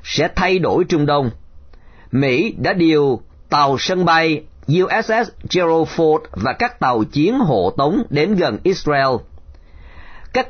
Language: Vietnamese